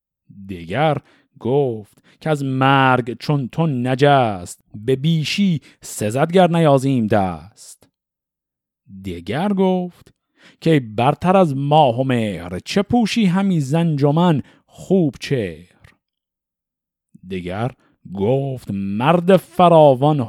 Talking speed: 90 wpm